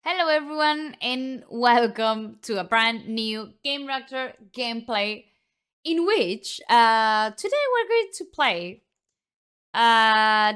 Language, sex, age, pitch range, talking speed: Italian, female, 20-39, 210-260 Hz, 115 wpm